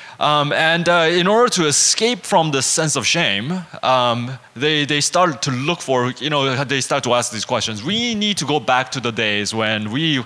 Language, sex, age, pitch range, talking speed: English, male, 20-39, 130-175 Hz, 215 wpm